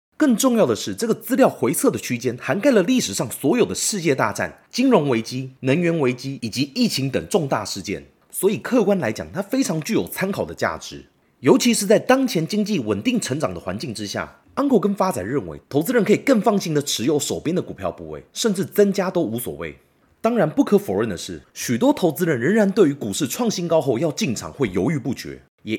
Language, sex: Chinese, male